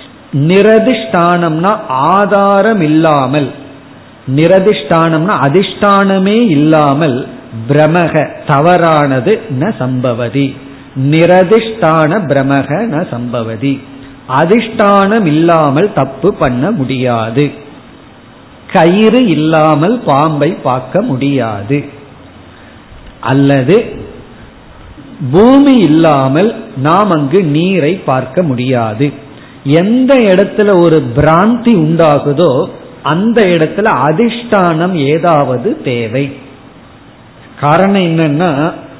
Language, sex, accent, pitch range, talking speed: Tamil, male, native, 140-195 Hz, 55 wpm